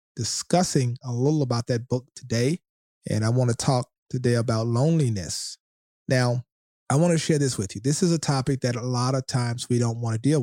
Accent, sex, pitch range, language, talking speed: American, male, 115-135 Hz, English, 215 wpm